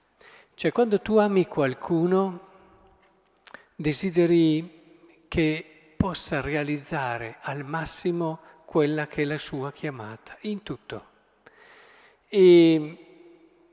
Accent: native